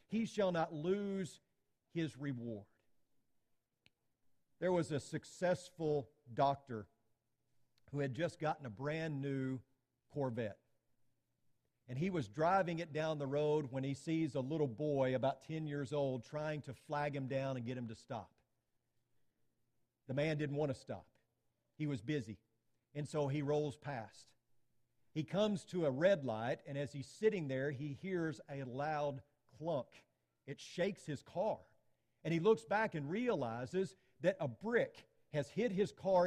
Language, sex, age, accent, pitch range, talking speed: English, male, 50-69, American, 130-185 Hz, 155 wpm